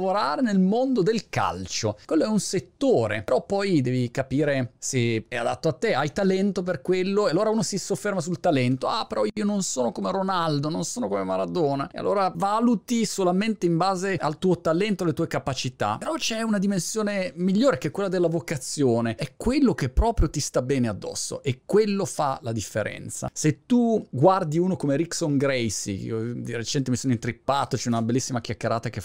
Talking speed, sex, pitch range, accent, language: 185 wpm, male, 125-200 Hz, native, Italian